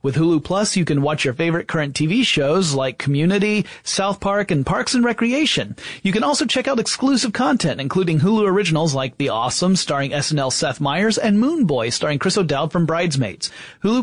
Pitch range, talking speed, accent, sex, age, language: 145-195 Hz, 190 wpm, American, male, 30-49, English